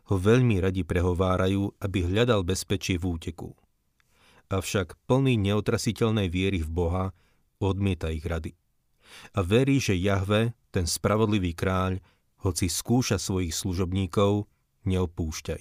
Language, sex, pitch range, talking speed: Slovak, male, 90-105 Hz, 115 wpm